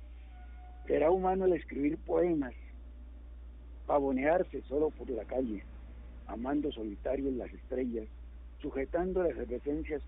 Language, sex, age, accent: Spanish, male, 60-79, Mexican